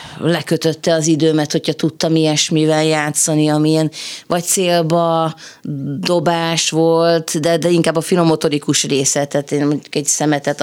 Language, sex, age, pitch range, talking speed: Hungarian, female, 30-49, 140-165 Hz, 130 wpm